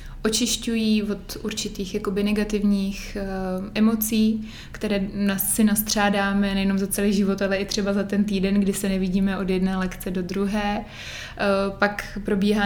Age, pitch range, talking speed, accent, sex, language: 20-39, 195-205 Hz, 145 wpm, native, female, Czech